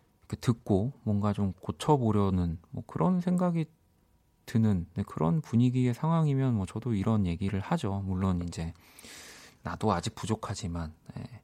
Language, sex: Korean, male